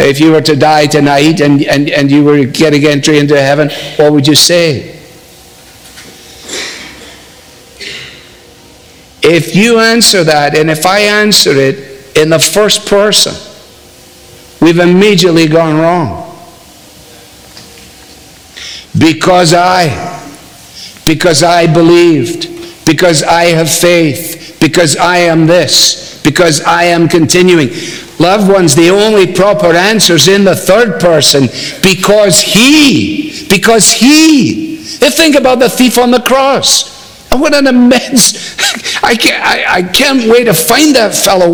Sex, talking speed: male, 130 wpm